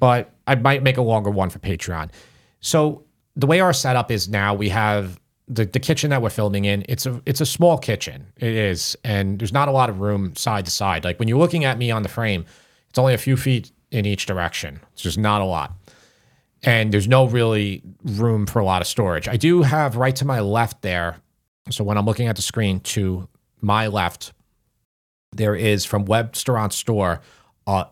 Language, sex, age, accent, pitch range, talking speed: English, male, 30-49, American, 95-125 Hz, 215 wpm